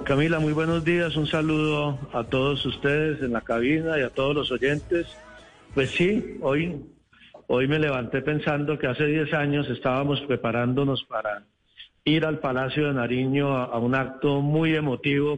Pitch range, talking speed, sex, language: 125-150 Hz, 165 wpm, male, Spanish